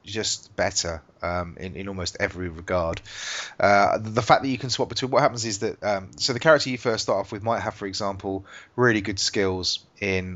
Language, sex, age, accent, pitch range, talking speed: English, male, 30-49, British, 95-115 Hz, 215 wpm